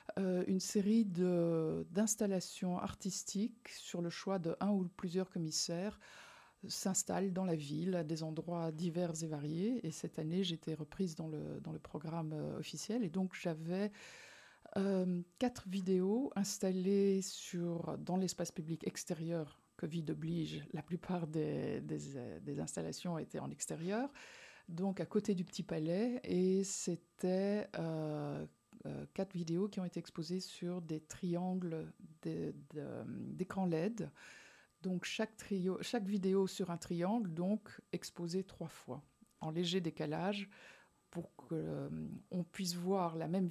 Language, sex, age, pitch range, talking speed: French, female, 50-69, 165-195 Hz, 145 wpm